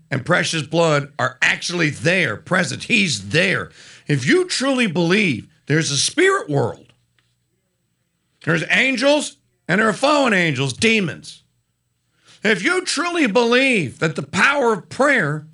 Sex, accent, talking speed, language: male, American, 130 wpm, English